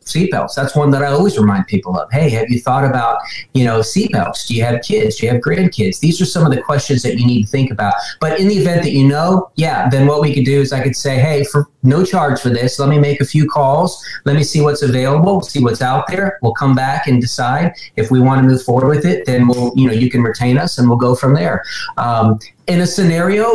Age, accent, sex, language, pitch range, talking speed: 30-49, American, male, English, 120-150 Hz, 270 wpm